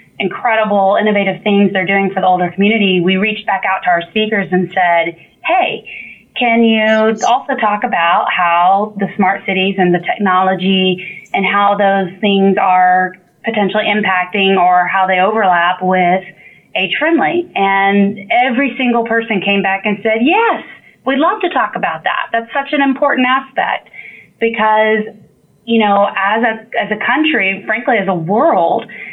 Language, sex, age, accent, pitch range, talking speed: English, female, 30-49, American, 195-230 Hz, 155 wpm